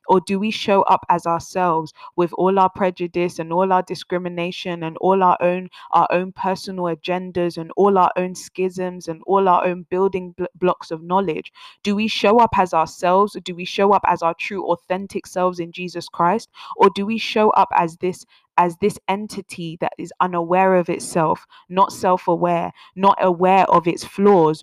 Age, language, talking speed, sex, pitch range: 20-39, English, 190 wpm, female, 170-195 Hz